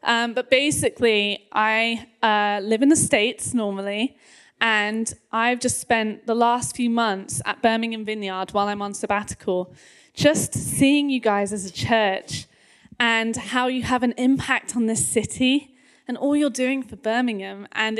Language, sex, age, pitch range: English, female, 10-29, 215-265 Hz